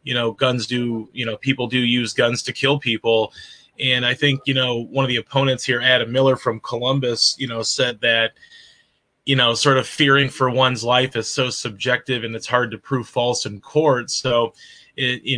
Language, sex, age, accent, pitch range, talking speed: English, male, 30-49, American, 120-135 Hz, 205 wpm